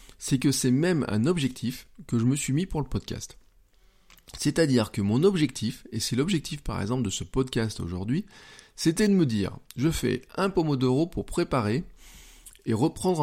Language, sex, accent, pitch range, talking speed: French, male, French, 105-135 Hz, 175 wpm